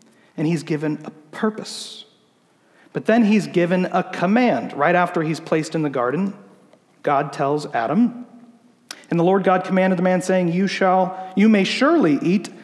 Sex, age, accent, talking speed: male, 40-59, American, 165 wpm